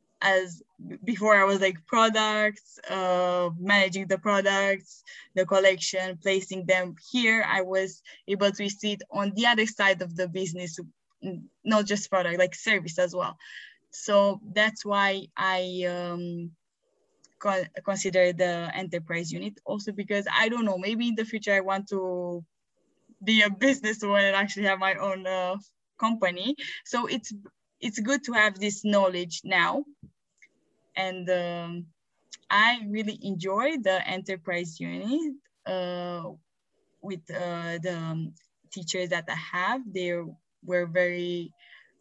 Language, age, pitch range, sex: English, 10-29, 180-210 Hz, female